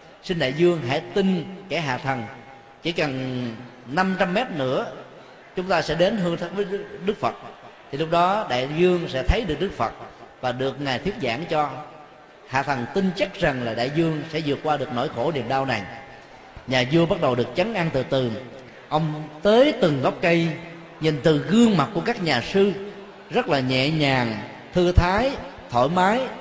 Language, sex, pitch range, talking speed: Vietnamese, male, 135-195 Hz, 195 wpm